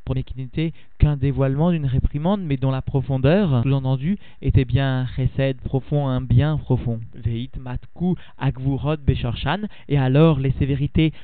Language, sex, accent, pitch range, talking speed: French, male, French, 130-160 Hz, 135 wpm